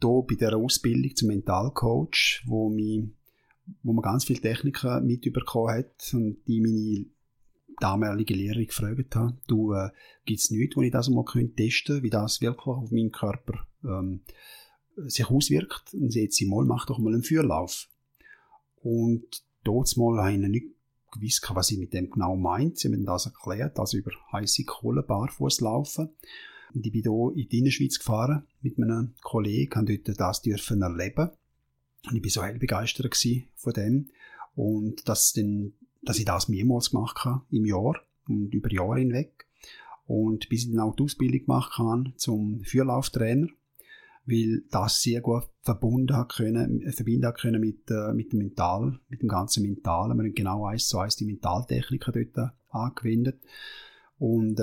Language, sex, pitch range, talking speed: German, male, 110-130 Hz, 165 wpm